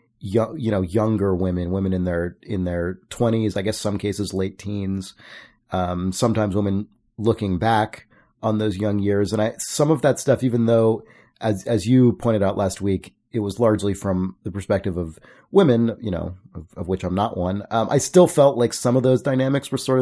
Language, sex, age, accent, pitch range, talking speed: English, male, 30-49, American, 90-115 Hz, 200 wpm